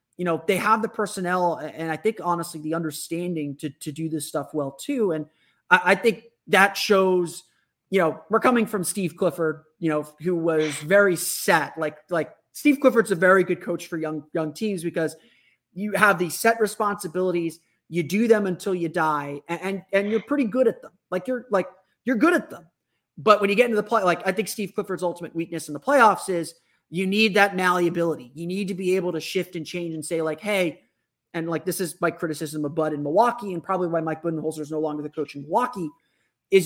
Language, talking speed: English, 220 wpm